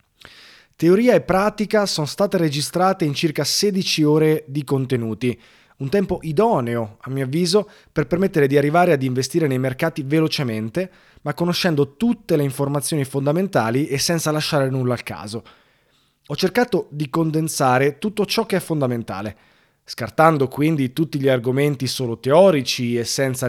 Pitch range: 125-165 Hz